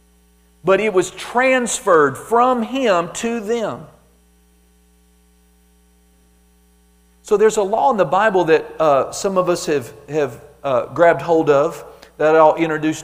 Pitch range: 120-195 Hz